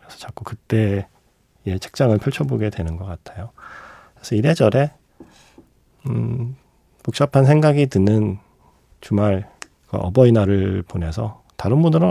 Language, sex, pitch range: Korean, male, 95-125 Hz